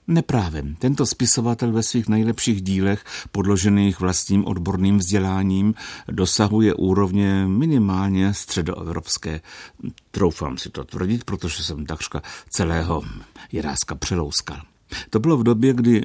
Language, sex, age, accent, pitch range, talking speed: Czech, male, 60-79, native, 85-100 Hz, 110 wpm